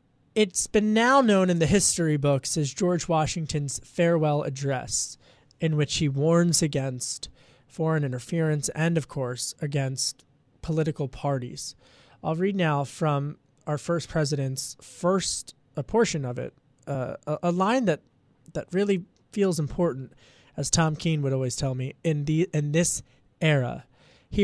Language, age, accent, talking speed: English, 20-39, American, 145 wpm